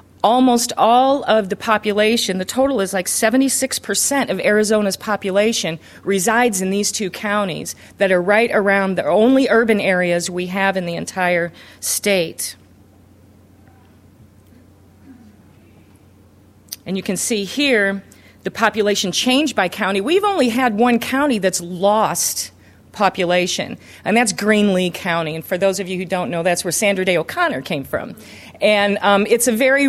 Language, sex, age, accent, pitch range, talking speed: English, female, 40-59, American, 185-225 Hz, 150 wpm